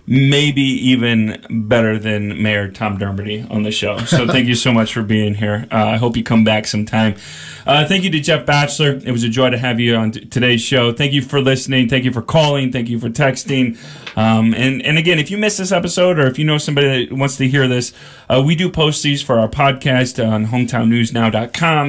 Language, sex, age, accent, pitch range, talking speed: English, male, 30-49, American, 115-145 Hz, 230 wpm